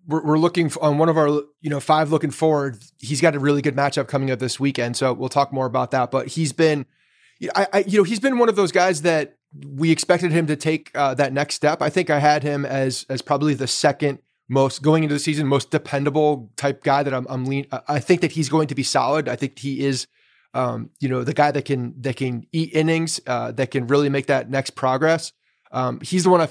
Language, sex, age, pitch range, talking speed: English, male, 30-49, 135-160 Hz, 245 wpm